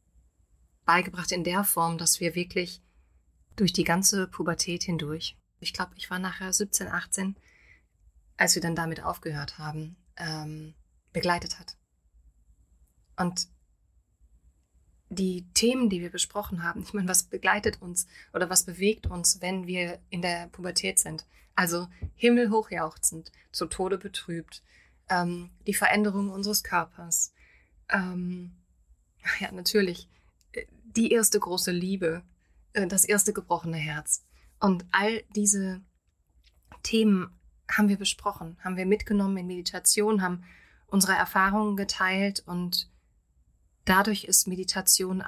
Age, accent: 20-39, German